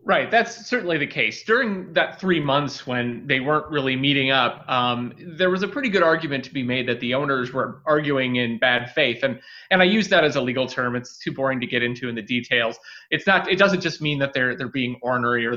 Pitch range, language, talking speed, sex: 125-180 Hz, English, 245 wpm, male